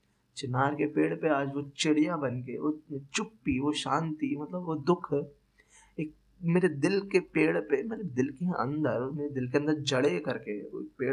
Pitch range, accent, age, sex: 130-160 Hz, native, 20-39, male